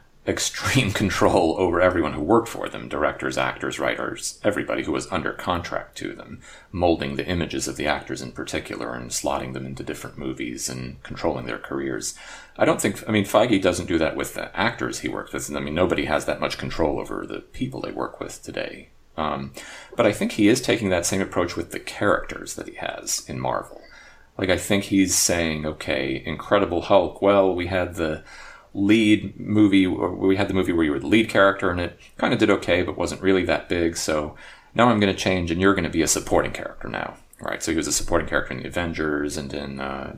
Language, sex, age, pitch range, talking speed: English, male, 40-59, 75-95 Hz, 220 wpm